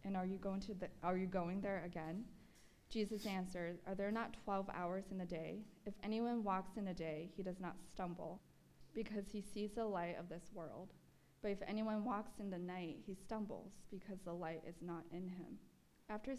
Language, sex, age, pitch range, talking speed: English, female, 20-39, 175-205 Hz, 205 wpm